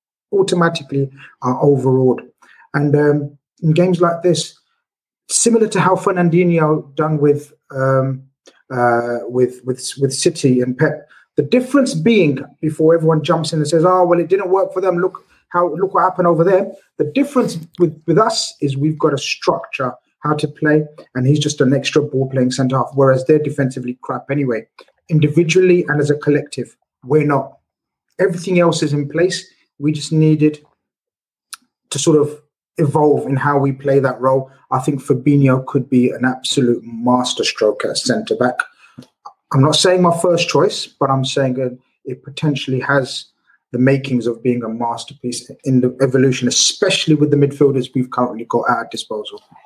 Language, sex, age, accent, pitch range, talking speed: English, male, 30-49, British, 130-170 Hz, 170 wpm